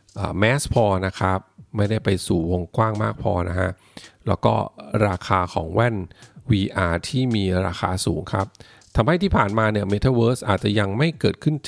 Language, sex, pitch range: Thai, male, 95-120 Hz